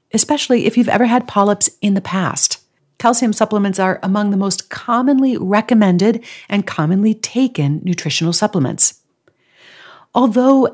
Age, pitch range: 50-69, 165-225 Hz